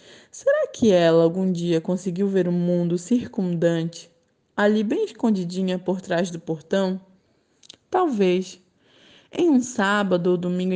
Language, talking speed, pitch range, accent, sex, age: Portuguese, 130 wpm, 170-210 Hz, Brazilian, female, 20-39